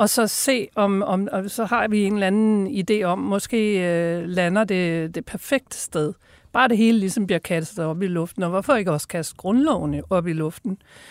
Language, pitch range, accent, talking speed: Danish, 175-225 Hz, native, 210 wpm